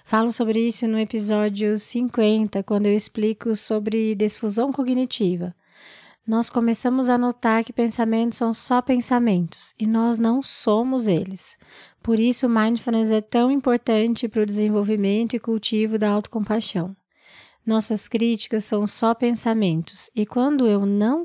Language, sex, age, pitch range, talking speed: Portuguese, female, 20-39, 195-235 Hz, 140 wpm